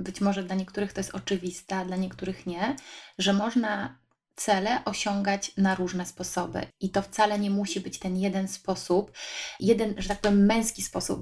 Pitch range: 195-225 Hz